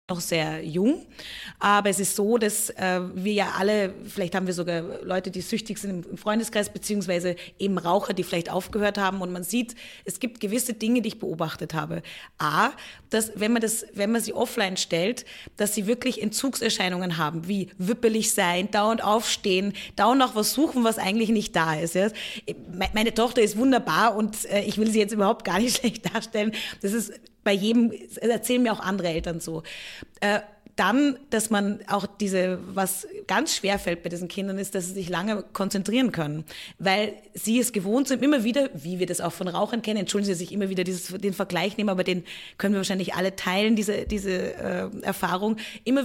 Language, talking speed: German, 195 wpm